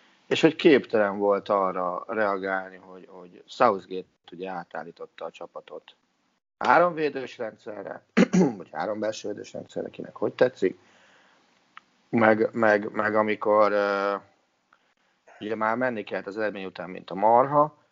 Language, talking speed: Hungarian, 115 wpm